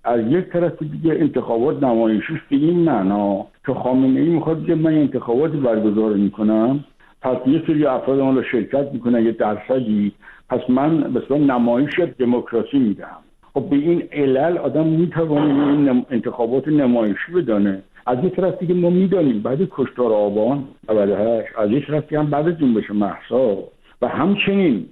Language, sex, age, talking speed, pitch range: Persian, male, 60-79, 150 wpm, 115-160 Hz